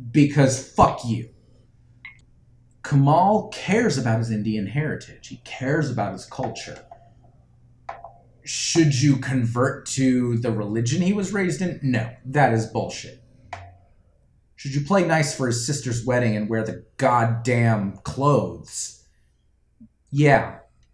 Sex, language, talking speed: male, English, 120 wpm